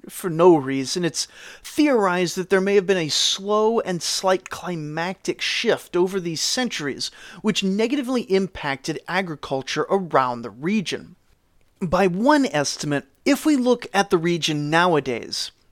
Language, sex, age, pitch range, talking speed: English, male, 30-49, 160-220 Hz, 135 wpm